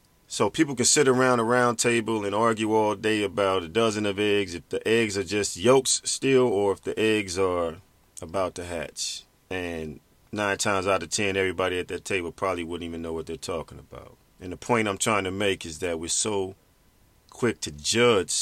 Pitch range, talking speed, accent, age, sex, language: 85-110 Hz, 210 wpm, American, 40-59, male, English